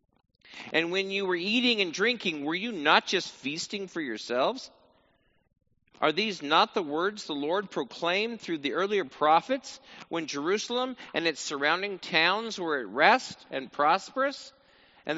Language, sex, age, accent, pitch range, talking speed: English, male, 50-69, American, 155-220 Hz, 150 wpm